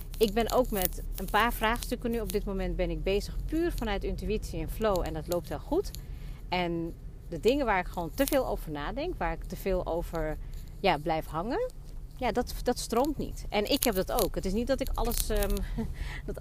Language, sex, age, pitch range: Dutch, female, 40-59, 155-200 Hz